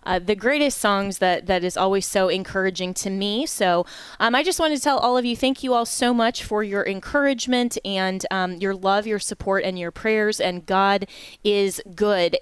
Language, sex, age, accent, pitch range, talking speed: English, female, 20-39, American, 190-235 Hz, 210 wpm